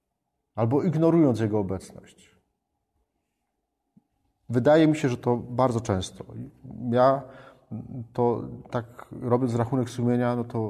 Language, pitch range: Polish, 115-145 Hz